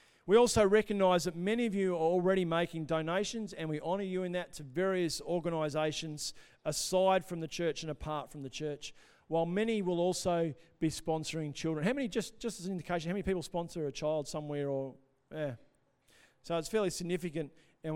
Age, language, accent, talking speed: 50-69, English, Australian, 190 wpm